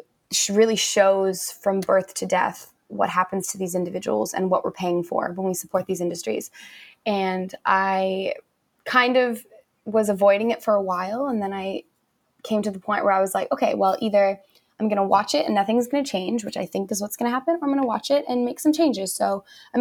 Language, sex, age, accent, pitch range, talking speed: English, female, 20-39, American, 190-225 Hz, 225 wpm